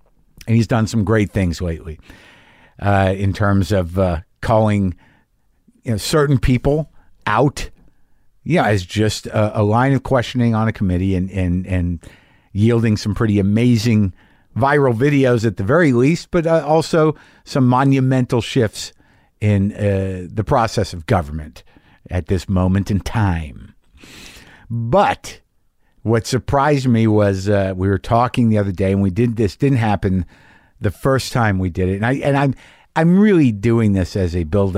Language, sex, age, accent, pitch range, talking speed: English, male, 50-69, American, 95-120 Hz, 155 wpm